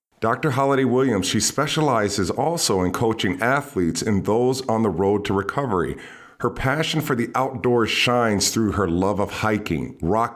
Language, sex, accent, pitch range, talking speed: English, male, American, 90-115 Hz, 160 wpm